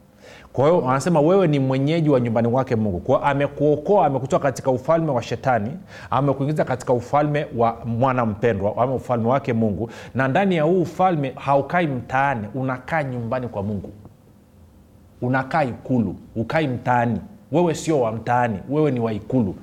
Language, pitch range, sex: Swahili, 105-145 Hz, male